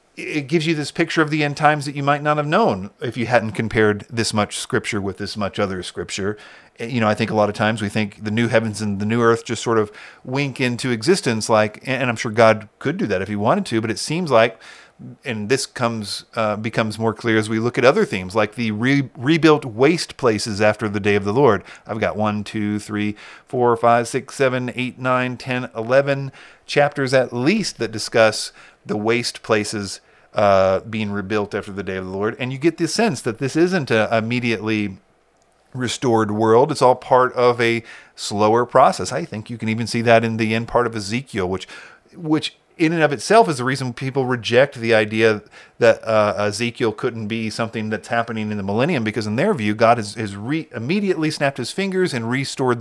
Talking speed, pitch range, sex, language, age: 215 wpm, 105-130 Hz, male, English, 40-59